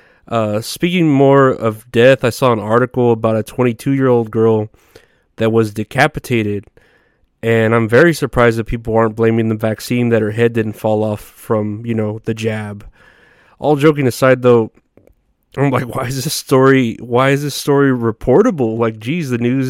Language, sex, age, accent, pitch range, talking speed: English, male, 30-49, American, 115-130 Hz, 175 wpm